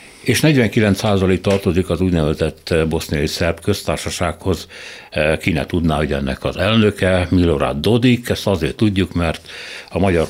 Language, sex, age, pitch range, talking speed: Hungarian, male, 60-79, 80-100 Hz, 130 wpm